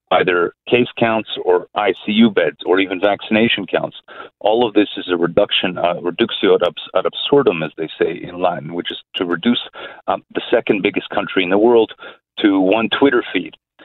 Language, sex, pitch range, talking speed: English, male, 90-130 Hz, 180 wpm